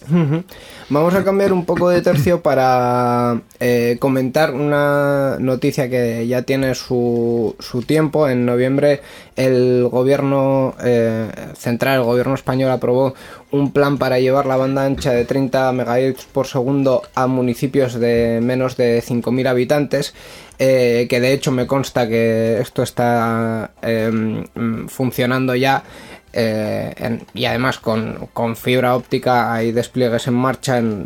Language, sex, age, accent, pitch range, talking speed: Spanish, male, 20-39, Spanish, 120-135 Hz, 140 wpm